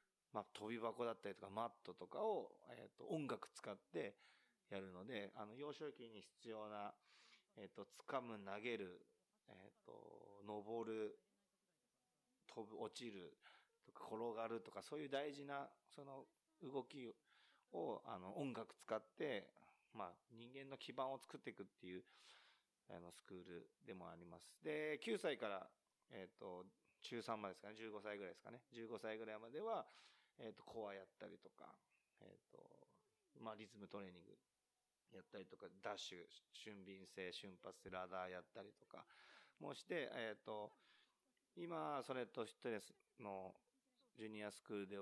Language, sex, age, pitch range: Japanese, male, 30-49, 95-125 Hz